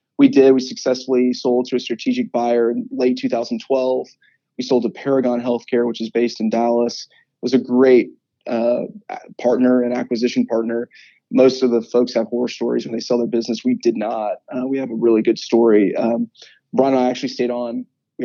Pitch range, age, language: 120-130 Hz, 20-39, English